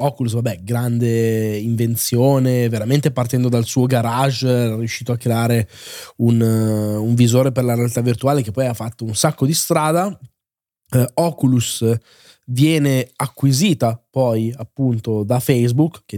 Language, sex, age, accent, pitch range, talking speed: Italian, male, 20-39, native, 120-155 Hz, 135 wpm